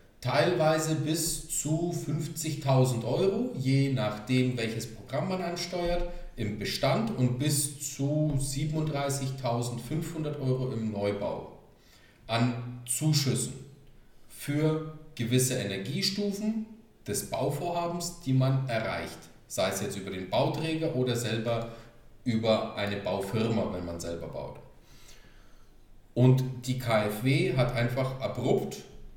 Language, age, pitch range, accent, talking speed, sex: German, 40-59, 120-150 Hz, German, 105 wpm, male